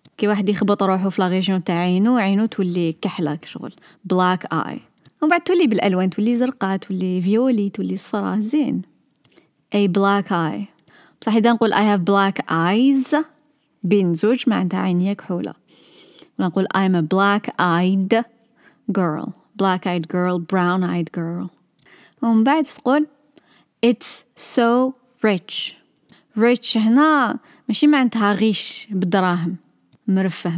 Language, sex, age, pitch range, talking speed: Arabic, female, 20-39, 185-240 Hz, 130 wpm